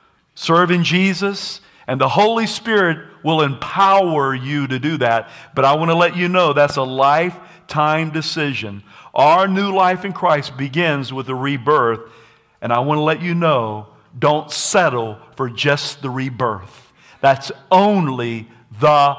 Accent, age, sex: American, 50-69, male